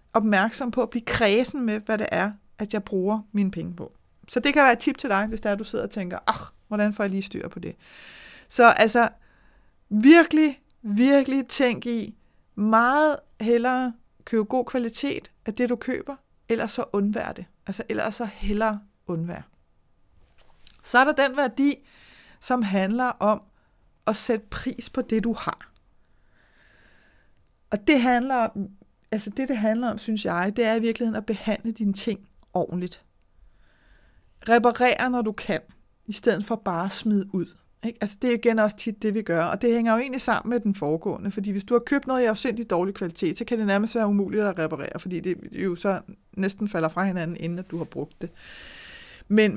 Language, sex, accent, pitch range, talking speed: Danish, female, native, 195-240 Hz, 190 wpm